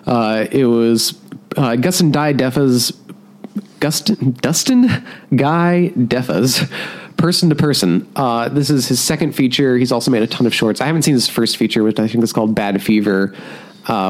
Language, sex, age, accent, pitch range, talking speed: English, male, 30-49, American, 115-150 Hz, 175 wpm